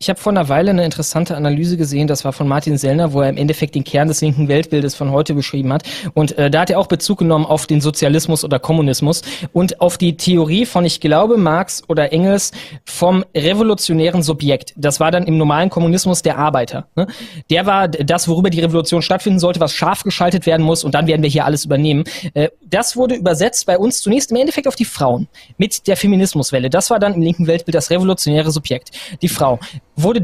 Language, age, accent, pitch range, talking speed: German, 20-39, German, 150-190 Hz, 215 wpm